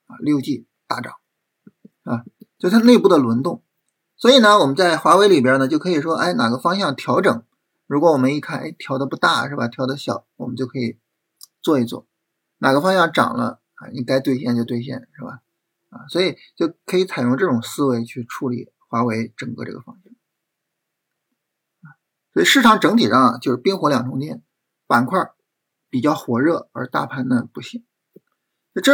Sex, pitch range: male, 130-205 Hz